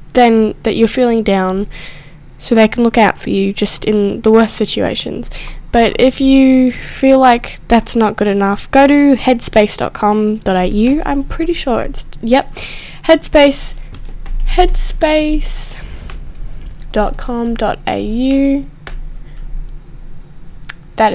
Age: 10-29